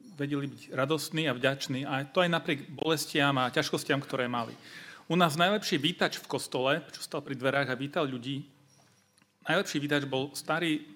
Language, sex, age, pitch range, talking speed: Slovak, male, 40-59, 135-155 Hz, 170 wpm